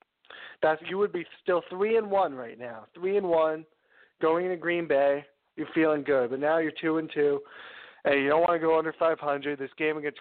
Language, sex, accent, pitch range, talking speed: English, male, American, 145-165 Hz, 225 wpm